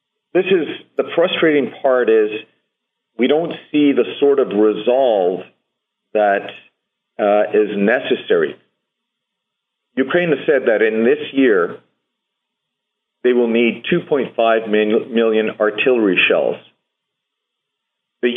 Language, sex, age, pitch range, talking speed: English, male, 40-59, 110-160 Hz, 110 wpm